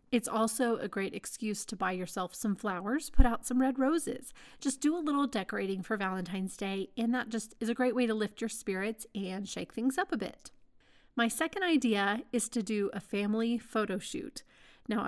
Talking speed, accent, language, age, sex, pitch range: 205 wpm, American, English, 30-49, female, 200-250 Hz